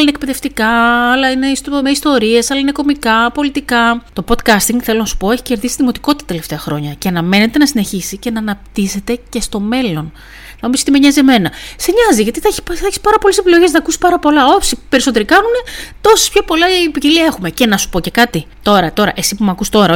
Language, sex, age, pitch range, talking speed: Greek, female, 30-49, 175-260 Hz, 220 wpm